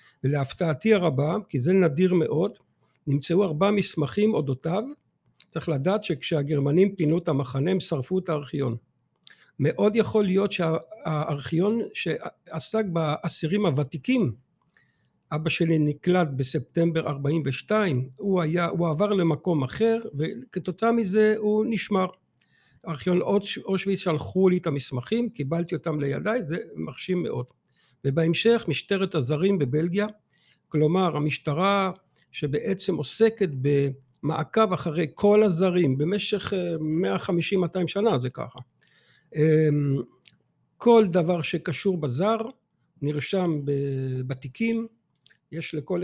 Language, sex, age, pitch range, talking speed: Hebrew, male, 60-79, 150-195 Hz, 100 wpm